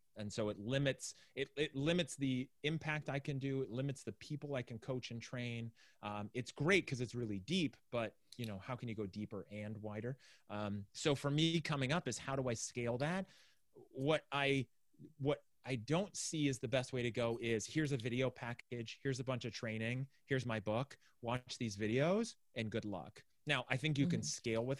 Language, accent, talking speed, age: English, American, 215 wpm, 30-49